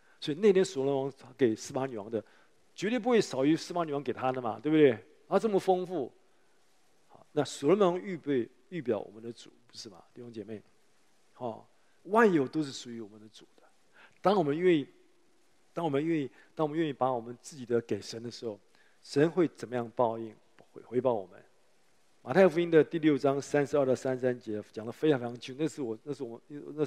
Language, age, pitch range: Chinese, 50-69, 125-165 Hz